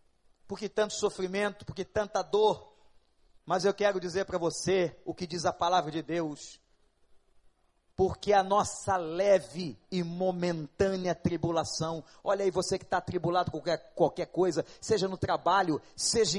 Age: 40-59